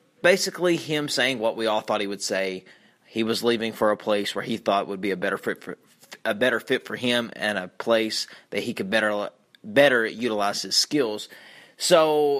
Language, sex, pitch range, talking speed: English, male, 110-145 Hz, 190 wpm